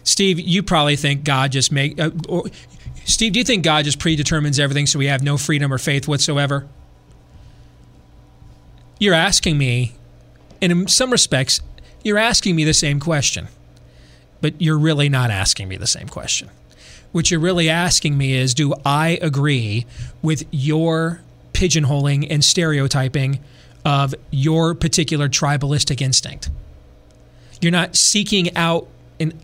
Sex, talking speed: male, 145 wpm